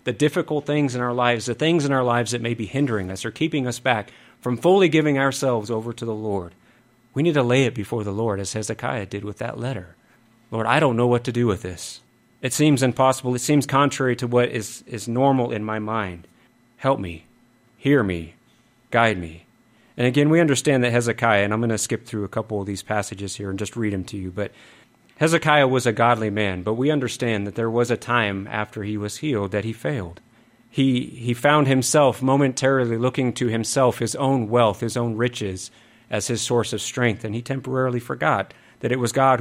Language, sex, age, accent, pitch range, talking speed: English, male, 30-49, American, 110-130 Hz, 220 wpm